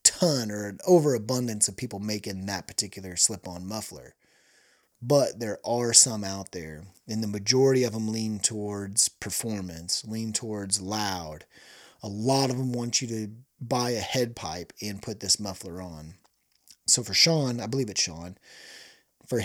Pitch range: 100-130 Hz